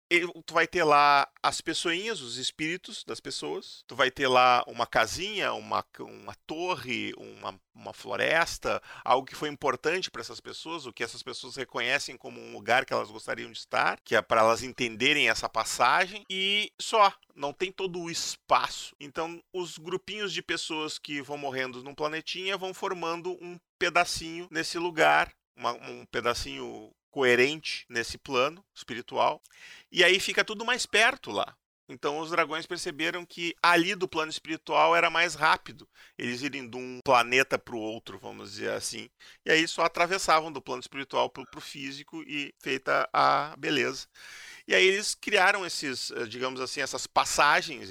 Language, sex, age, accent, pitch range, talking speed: Portuguese, male, 40-59, Brazilian, 135-180 Hz, 165 wpm